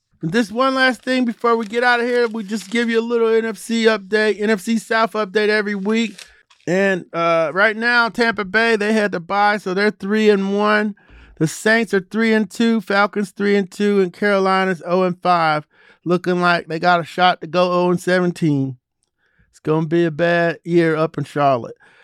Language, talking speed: English, 175 wpm